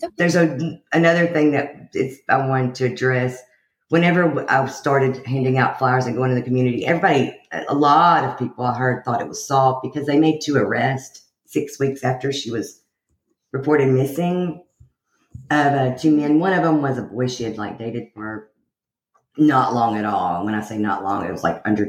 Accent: American